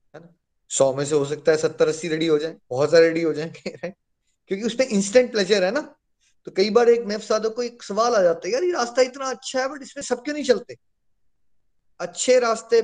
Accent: native